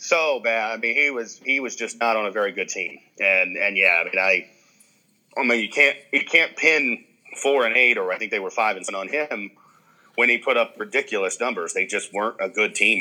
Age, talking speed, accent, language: 30-49, 245 wpm, American, English